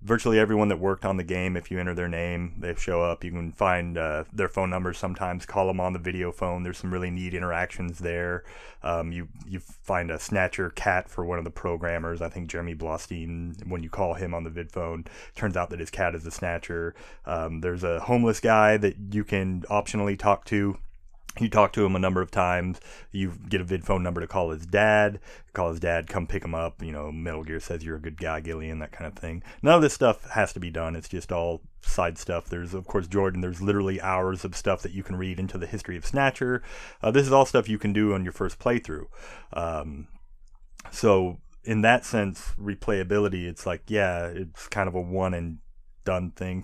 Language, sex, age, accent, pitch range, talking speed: English, male, 30-49, American, 85-100 Hz, 230 wpm